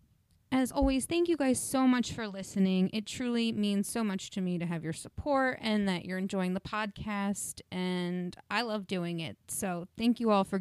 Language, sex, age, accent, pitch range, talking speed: English, female, 20-39, American, 190-255 Hz, 205 wpm